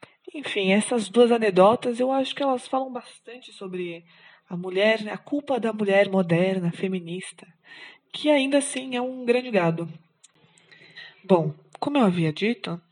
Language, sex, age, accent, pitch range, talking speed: Portuguese, female, 20-39, Brazilian, 165-240 Hz, 145 wpm